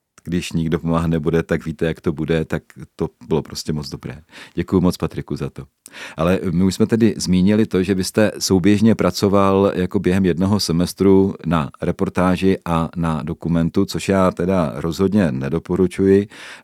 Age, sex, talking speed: 40-59, male, 160 wpm